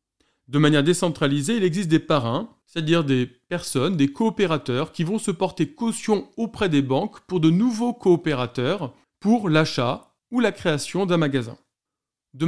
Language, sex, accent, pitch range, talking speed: French, male, French, 140-195 Hz, 155 wpm